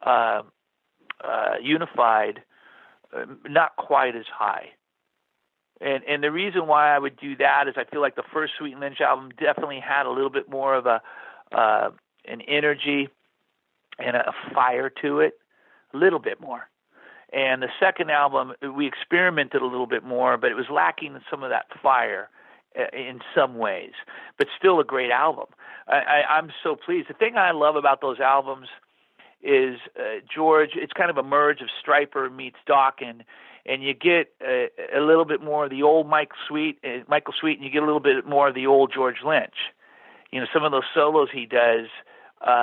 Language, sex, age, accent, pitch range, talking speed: English, male, 50-69, American, 135-190 Hz, 190 wpm